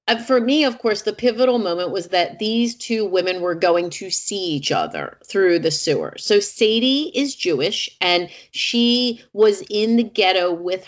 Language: English